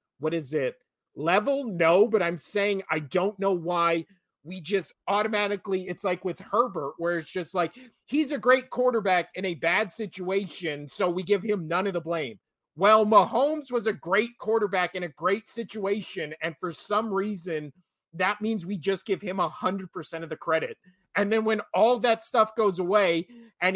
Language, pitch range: English, 175-220 Hz